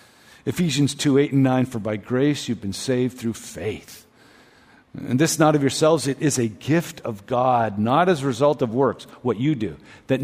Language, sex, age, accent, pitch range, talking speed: English, male, 50-69, American, 120-160 Hz, 205 wpm